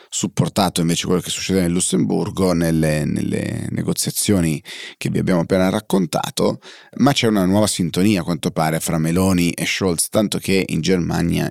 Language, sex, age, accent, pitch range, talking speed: Italian, male, 30-49, native, 80-95 Hz, 160 wpm